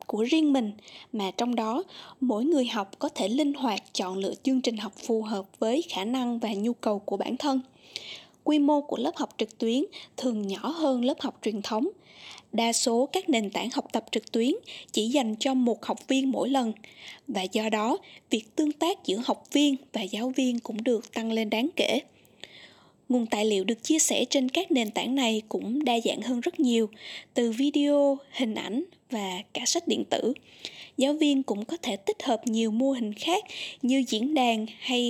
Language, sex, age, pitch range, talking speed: Vietnamese, female, 20-39, 225-285 Hz, 205 wpm